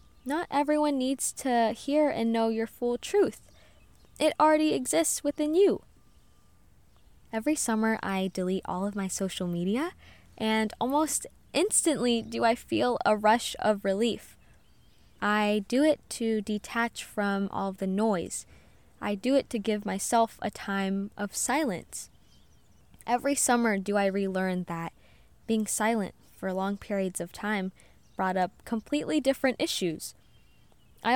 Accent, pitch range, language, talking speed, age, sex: American, 200-265 Hz, English, 140 wpm, 10-29, female